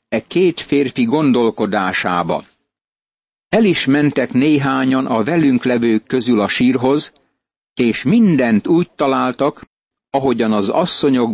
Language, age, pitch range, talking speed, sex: Hungarian, 60-79, 120-155 Hz, 110 wpm, male